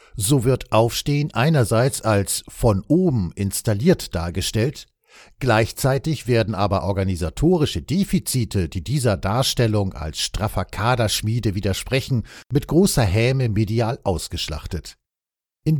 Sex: male